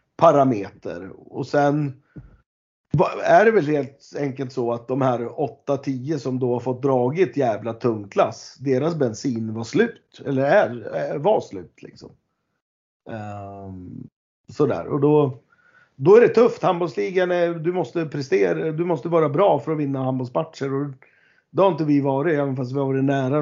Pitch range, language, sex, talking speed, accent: 110-140 Hz, Swedish, male, 160 wpm, native